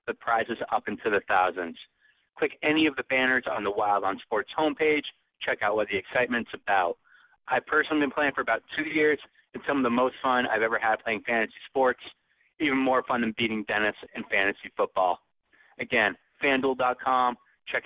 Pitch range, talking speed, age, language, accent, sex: 110-145 Hz, 185 wpm, 30-49, English, American, male